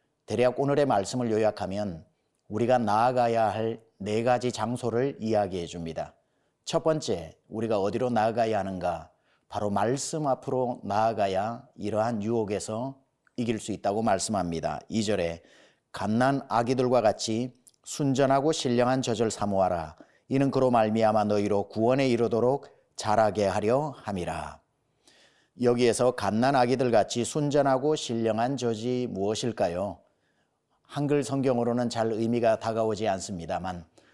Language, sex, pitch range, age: Korean, male, 110-135 Hz, 30-49